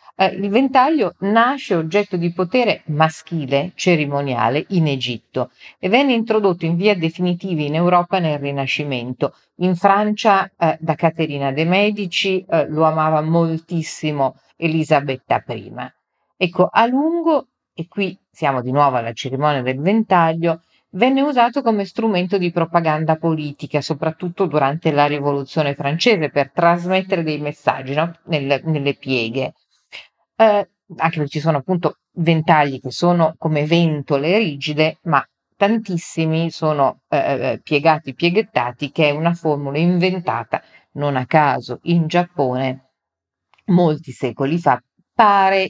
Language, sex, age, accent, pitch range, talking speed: Italian, female, 40-59, native, 145-185 Hz, 130 wpm